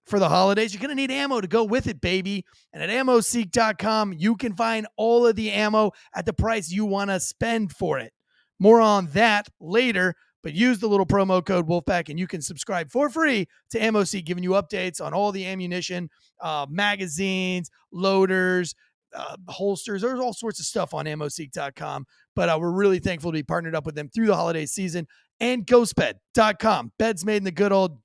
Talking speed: 200 wpm